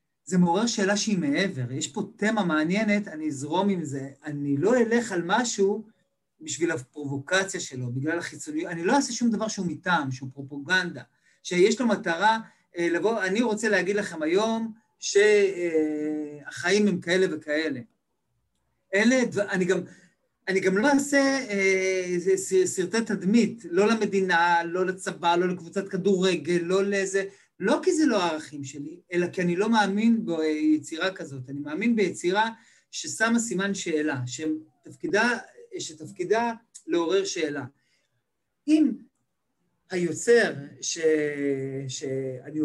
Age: 40-59